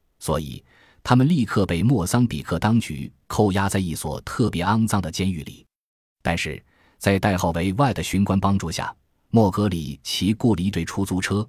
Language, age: Chinese, 20-39